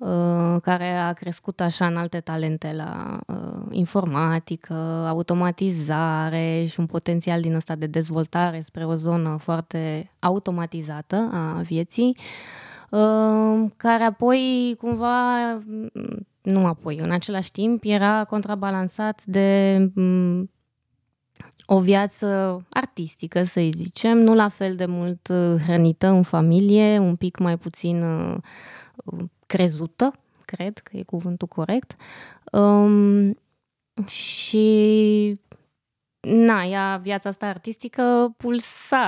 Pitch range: 170-215 Hz